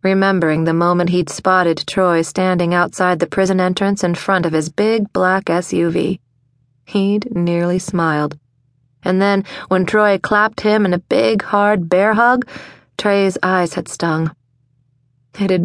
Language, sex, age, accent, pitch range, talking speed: English, female, 30-49, American, 160-200 Hz, 150 wpm